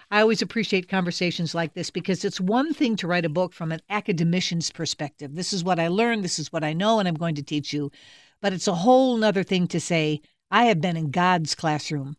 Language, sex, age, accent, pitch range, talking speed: English, female, 50-69, American, 165-200 Hz, 235 wpm